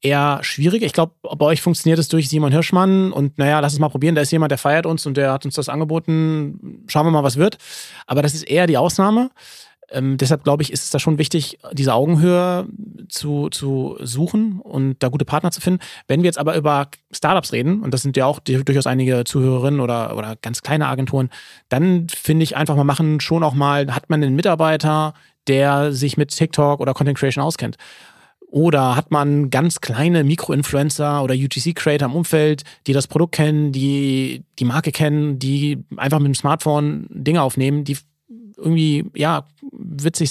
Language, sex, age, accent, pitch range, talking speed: German, male, 30-49, German, 135-160 Hz, 195 wpm